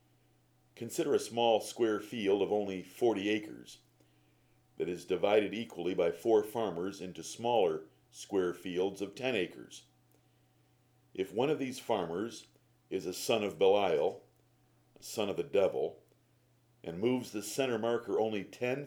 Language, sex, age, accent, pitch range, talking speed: English, male, 50-69, American, 95-130 Hz, 145 wpm